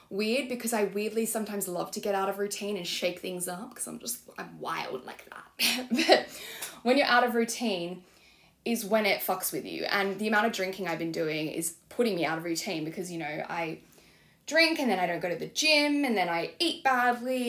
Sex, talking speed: female, 225 wpm